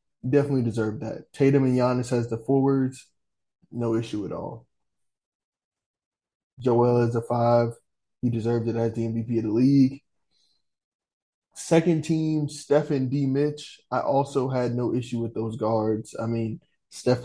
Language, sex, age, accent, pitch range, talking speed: English, male, 20-39, American, 120-145 Hz, 150 wpm